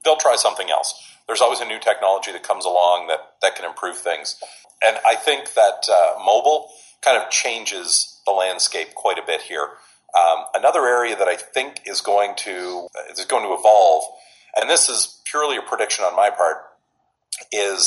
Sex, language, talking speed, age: male, English, 185 wpm, 40-59